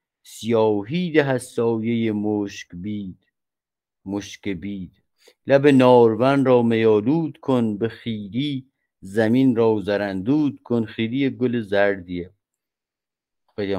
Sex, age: male, 50-69